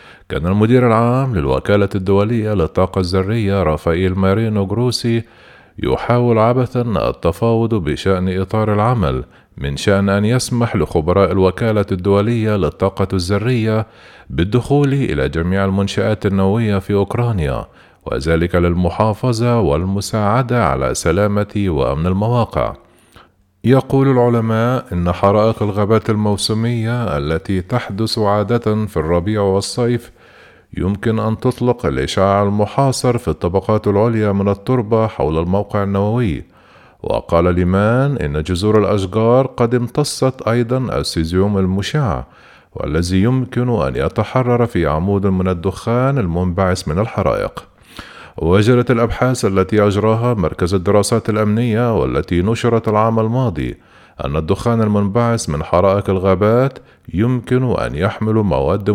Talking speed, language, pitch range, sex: 110 wpm, Arabic, 95-120 Hz, male